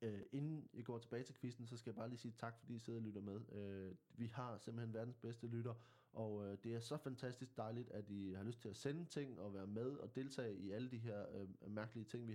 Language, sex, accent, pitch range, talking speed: Danish, male, native, 115-145 Hz, 265 wpm